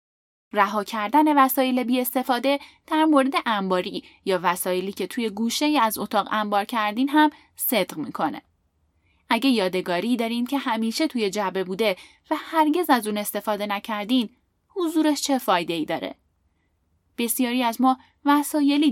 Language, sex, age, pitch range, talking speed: Persian, female, 10-29, 205-285 Hz, 135 wpm